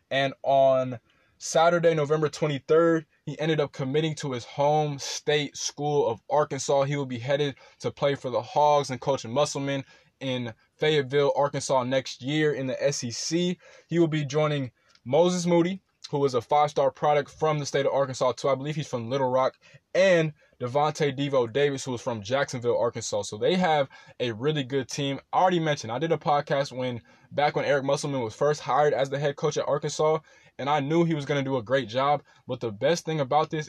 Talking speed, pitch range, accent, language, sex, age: 205 wpm, 130-150 Hz, American, English, male, 20-39